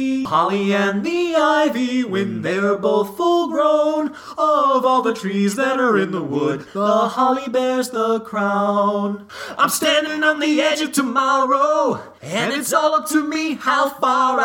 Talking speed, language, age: 160 wpm, English, 30-49